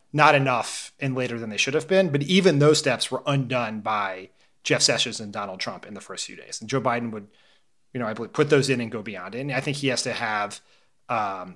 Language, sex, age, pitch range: English, male, 30-49, 105-135 Hz